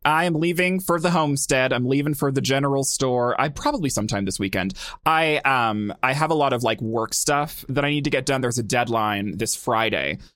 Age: 20-39